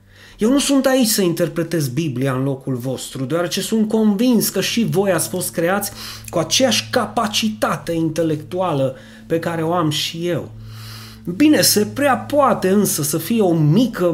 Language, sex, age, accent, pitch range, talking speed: Romanian, male, 30-49, native, 135-200 Hz, 160 wpm